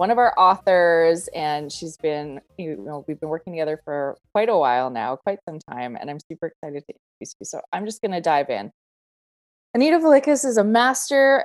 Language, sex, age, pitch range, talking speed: English, female, 20-39, 160-210 Hz, 210 wpm